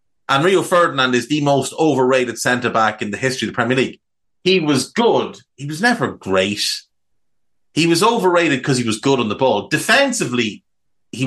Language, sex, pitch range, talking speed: English, male, 115-150 Hz, 180 wpm